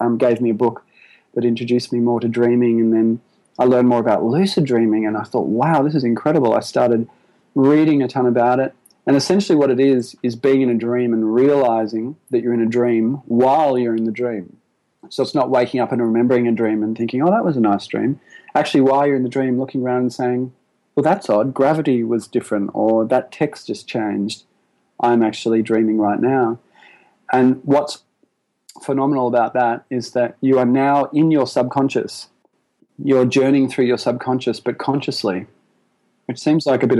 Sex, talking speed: male, 200 wpm